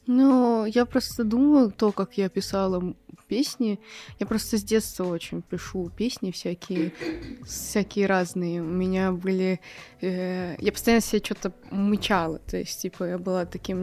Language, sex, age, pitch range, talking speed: Russian, female, 20-39, 185-215 Hz, 150 wpm